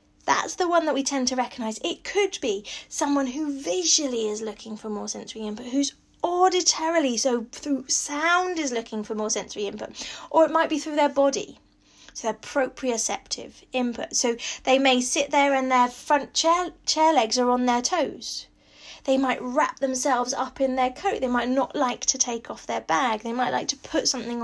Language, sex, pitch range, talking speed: English, female, 235-305 Hz, 195 wpm